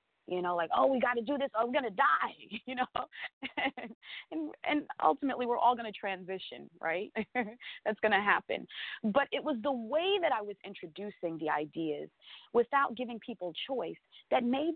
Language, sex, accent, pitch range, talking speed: English, female, American, 200-280 Hz, 170 wpm